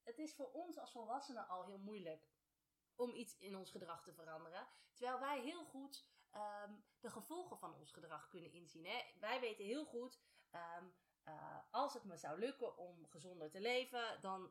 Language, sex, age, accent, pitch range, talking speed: Dutch, female, 30-49, Dutch, 180-260 Hz, 175 wpm